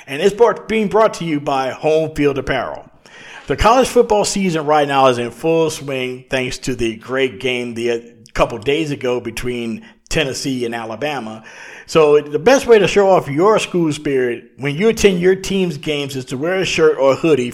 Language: English